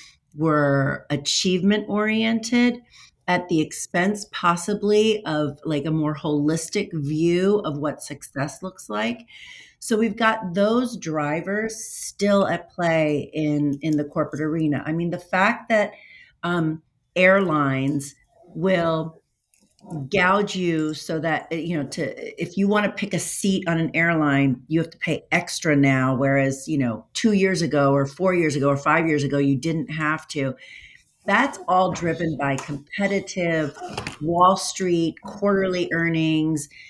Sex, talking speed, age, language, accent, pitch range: female, 145 wpm, 40-59, English, American, 150-190 Hz